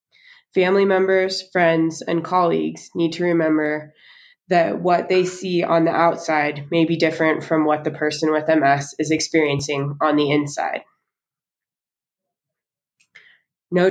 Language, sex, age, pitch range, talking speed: English, female, 20-39, 150-180 Hz, 130 wpm